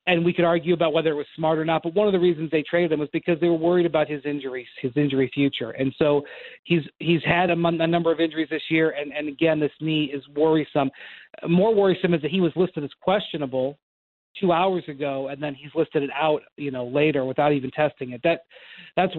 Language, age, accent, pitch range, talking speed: English, 40-59, American, 145-185 Hz, 240 wpm